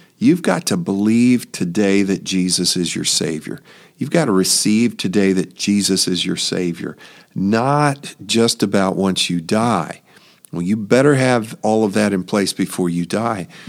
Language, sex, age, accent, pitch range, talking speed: English, male, 50-69, American, 100-130 Hz, 165 wpm